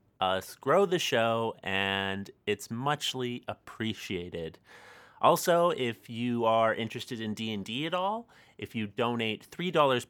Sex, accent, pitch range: male, American, 100-130 Hz